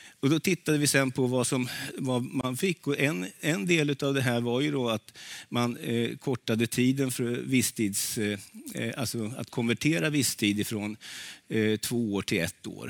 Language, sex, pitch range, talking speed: Swedish, male, 110-140 Hz, 190 wpm